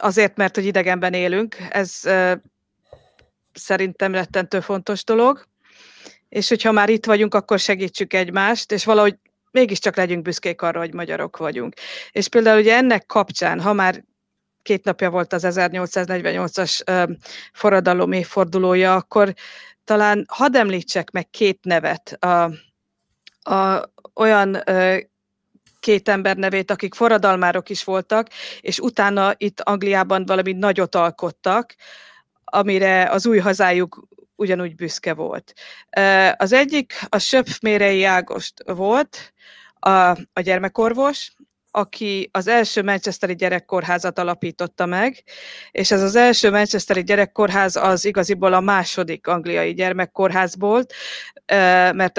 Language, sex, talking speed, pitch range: Hungarian, female, 120 wpm, 185-210 Hz